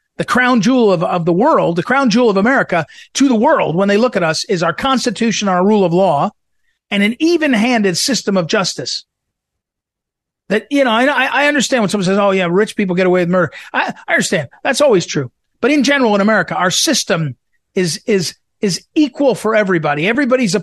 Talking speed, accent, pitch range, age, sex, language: 210 wpm, American, 180-245 Hz, 50-69, male, English